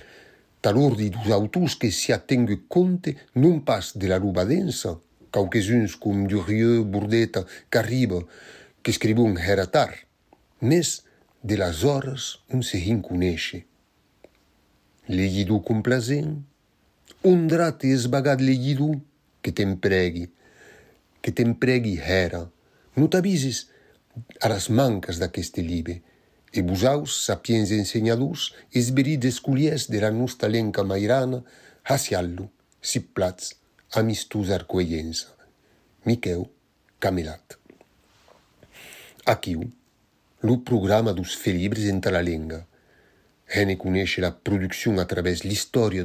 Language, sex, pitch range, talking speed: French, male, 95-125 Hz, 110 wpm